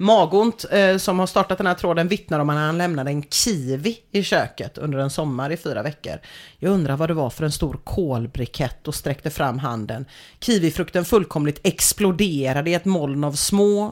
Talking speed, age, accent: 190 wpm, 30-49, Swedish